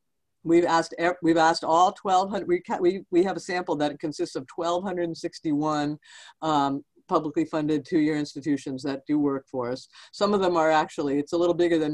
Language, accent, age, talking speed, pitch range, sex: English, American, 50-69, 210 wpm, 145-180 Hz, female